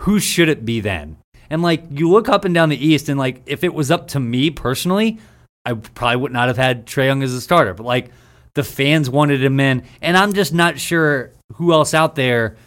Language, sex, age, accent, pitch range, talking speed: English, male, 30-49, American, 120-155 Hz, 235 wpm